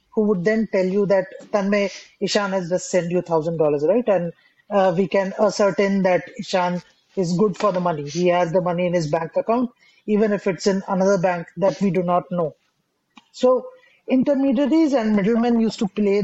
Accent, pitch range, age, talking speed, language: Indian, 180-215 Hz, 20-39, 195 wpm, English